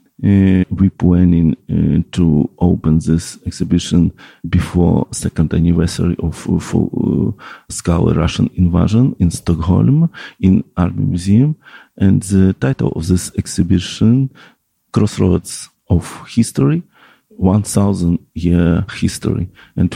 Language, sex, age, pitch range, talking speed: Swedish, male, 50-69, 85-105 Hz, 110 wpm